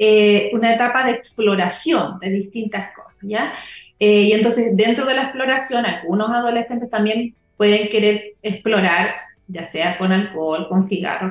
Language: Spanish